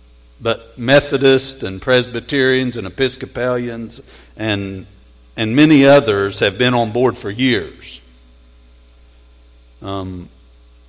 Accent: American